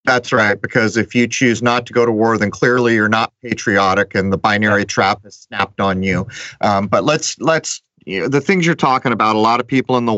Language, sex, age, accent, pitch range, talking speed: English, male, 30-49, American, 105-135 Hz, 240 wpm